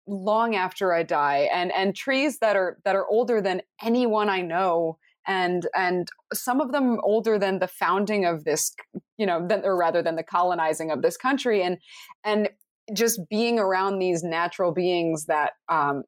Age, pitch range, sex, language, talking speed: 20-39, 165-210 Hz, female, English, 180 wpm